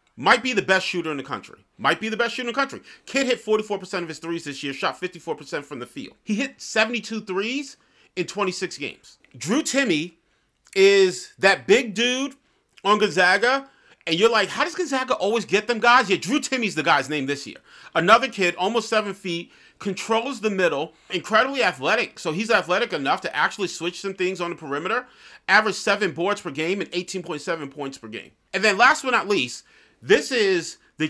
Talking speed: 200 wpm